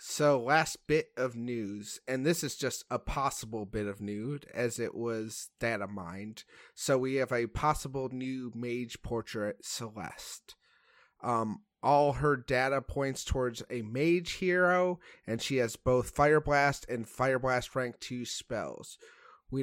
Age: 30-49